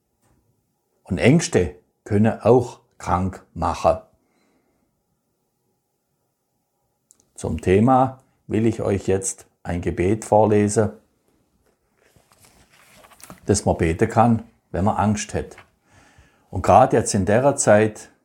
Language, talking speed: German, 95 wpm